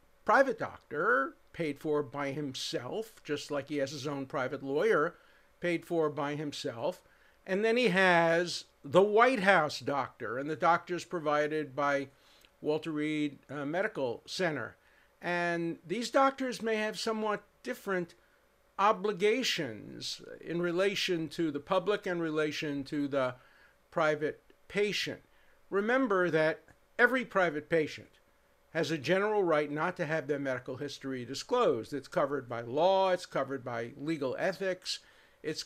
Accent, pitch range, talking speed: American, 145-190 Hz, 135 wpm